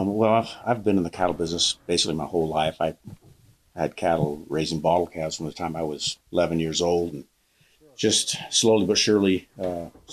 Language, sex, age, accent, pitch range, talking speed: English, male, 50-69, American, 80-90 Hz, 185 wpm